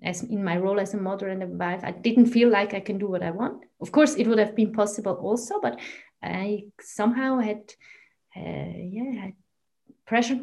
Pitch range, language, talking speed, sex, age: 195-250 Hz, English, 205 wpm, female, 30-49